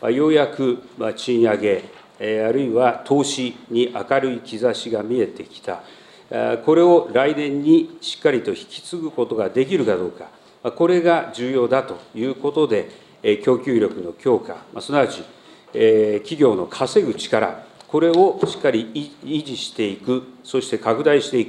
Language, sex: Japanese, male